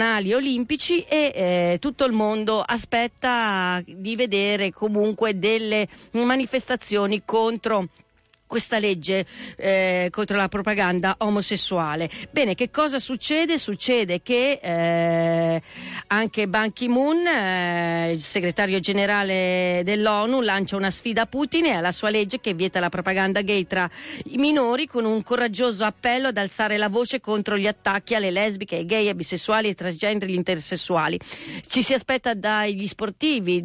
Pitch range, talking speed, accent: 185-225 Hz, 135 wpm, native